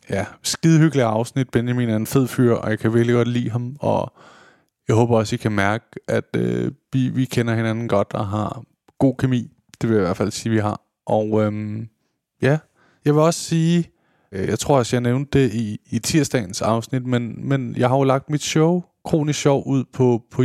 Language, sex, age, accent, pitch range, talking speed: English, male, 20-39, Danish, 110-135 Hz, 215 wpm